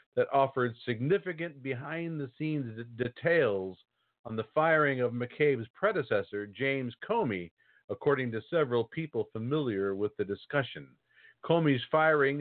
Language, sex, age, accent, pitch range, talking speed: English, male, 50-69, American, 110-145 Hz, 110 wpm